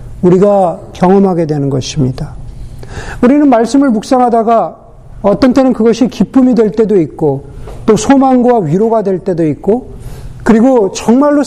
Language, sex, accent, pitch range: Korean, male, native, 145-225 Hz